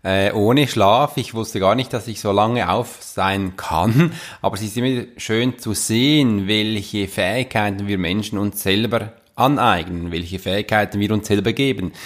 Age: 30-49